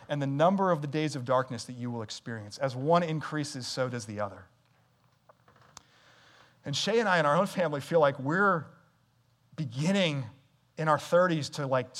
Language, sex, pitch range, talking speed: English, male, 135-170 Hz, 180 wpm